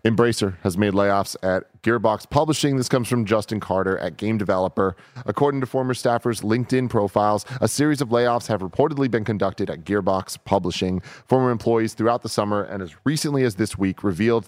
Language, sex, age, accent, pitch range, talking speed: English, male, 30-49, American, 95-120 Hz, 180 wpm